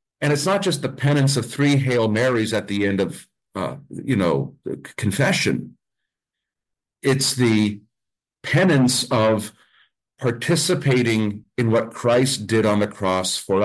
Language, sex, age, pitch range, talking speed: English, male, 50-69, 105-150 Hz, 140 wpm